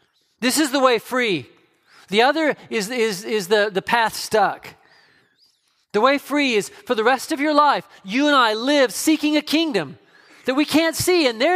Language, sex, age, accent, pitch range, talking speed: English, male, 40-59, American, 205-285 Hz, 190 wpm